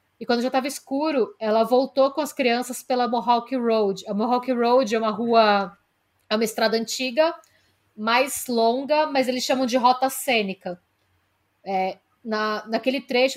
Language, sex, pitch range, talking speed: Portuguese, female, 225-270 Hz, 155 wpm